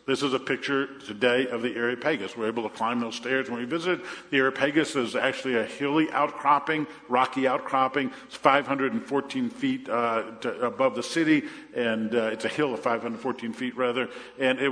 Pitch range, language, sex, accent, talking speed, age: 120-140 Hz, English, male, American, 185 wpm, 50-69